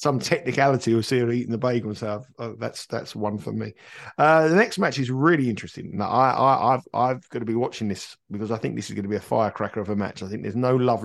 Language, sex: English, male